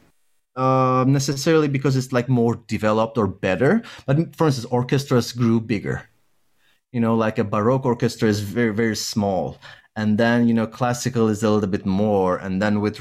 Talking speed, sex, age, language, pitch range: 175 wpm, male, 30-49, English, 110-135 Hz